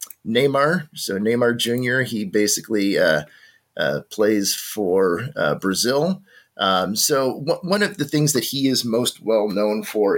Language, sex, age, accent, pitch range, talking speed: English, male, 30-49, American, 110-145 Hz, 145 wpm